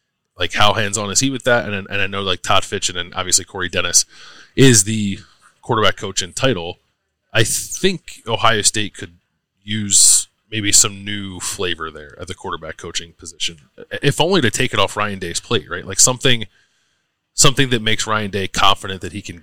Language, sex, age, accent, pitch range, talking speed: English, male, 20-39, American, 95-120 Hz, 190 wpm